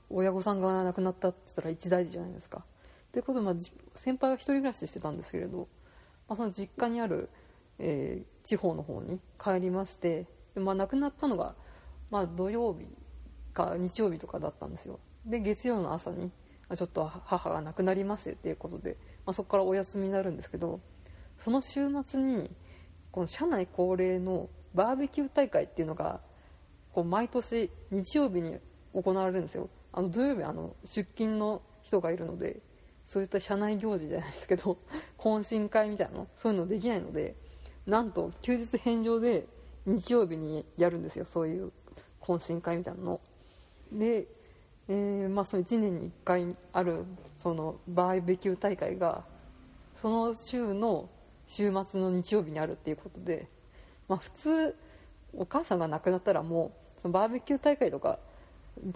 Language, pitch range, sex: Japanese, 175-225 Hz, female